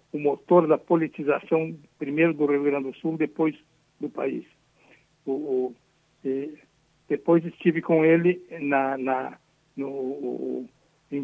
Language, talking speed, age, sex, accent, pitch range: Portuguese, 95 wpm, 60-79, male, Brazilian, 135-160 Hz